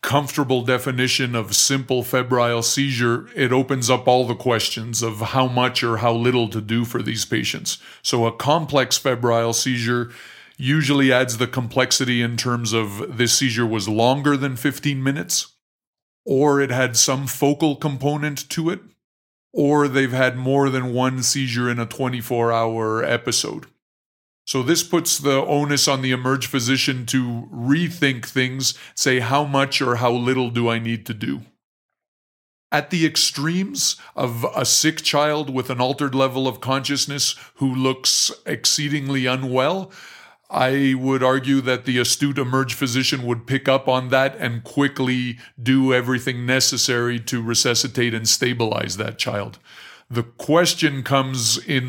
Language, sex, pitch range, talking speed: English, male, 120-140 Hz, 150 wpm